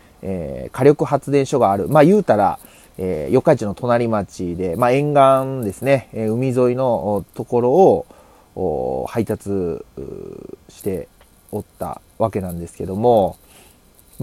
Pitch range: 100-140 Hz